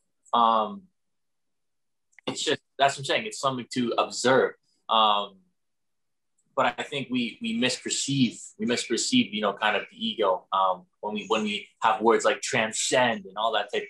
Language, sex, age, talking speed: English, male, 20-39, 170 wpm